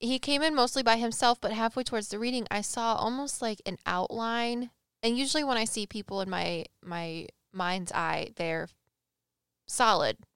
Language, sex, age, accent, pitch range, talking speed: English, female, 10-29, American, 190-250 Hz, 175 wpm